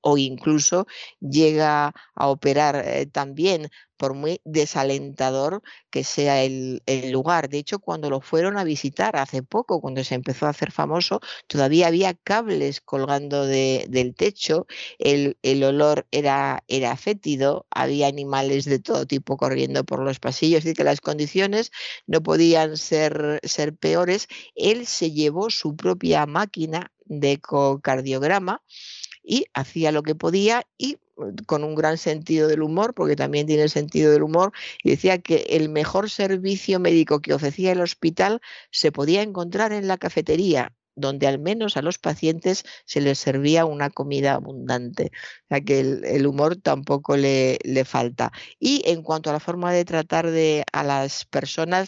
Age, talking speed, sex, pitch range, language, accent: 50-69, 160 wpm, female, 140-175 Hz, Spanish, Spanish